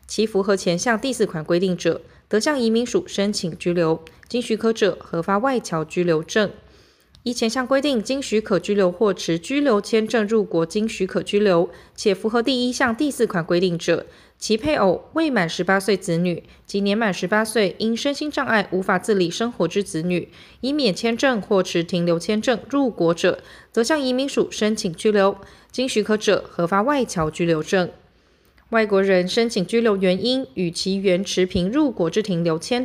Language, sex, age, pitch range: Chinese, female, 20-39, 180-245 Hz